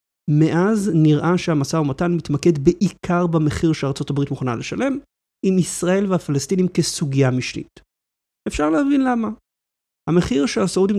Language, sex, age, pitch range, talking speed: Hebrew, male, 30-49, 140-185 Hz, 115 wpm